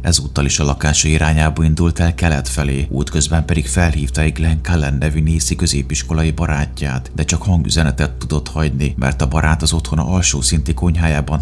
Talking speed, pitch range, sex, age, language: 170 wpm, 70-80 Hz, male, 30-49, Hungarian